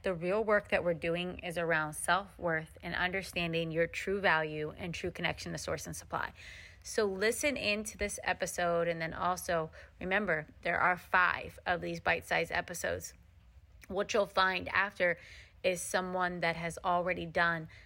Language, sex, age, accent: English, female, 30-49, American